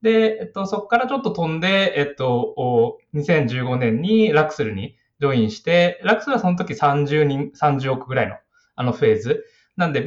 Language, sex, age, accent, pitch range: Japanese, male, 20-39, native, 130-205 Hz